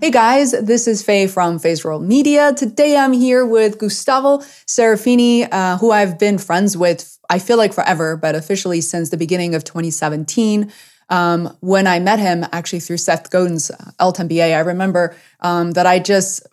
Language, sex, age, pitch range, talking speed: English, female, 20-39, 180-220 Hz, 175 wpm